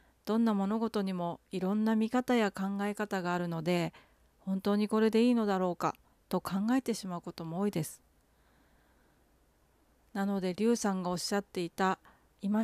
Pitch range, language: 165-220 Hz, Japanese